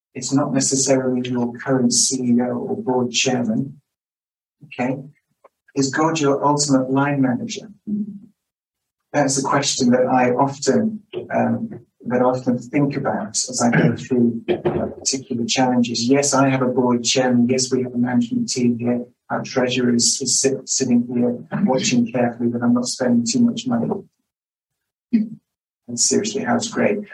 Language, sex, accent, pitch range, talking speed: English, male, British, 125-145 Hz, 150 wpm